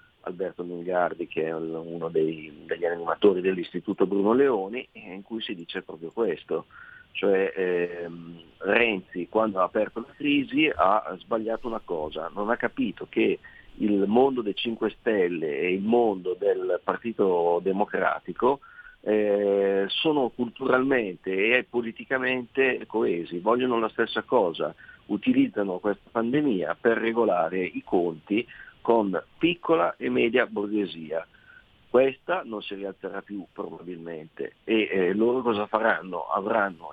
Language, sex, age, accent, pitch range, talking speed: Italian, male, 50-69, native, 95-125 Hz, 125 wpm